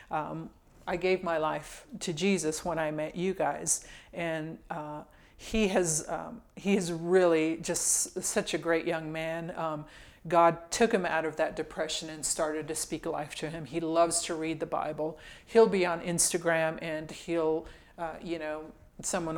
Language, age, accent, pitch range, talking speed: English, 40-59, American, 155-170 Hz, 175 wpm